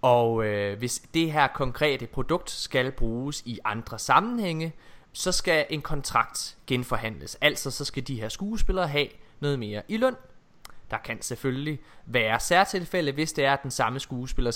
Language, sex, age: Danish, male, 20-39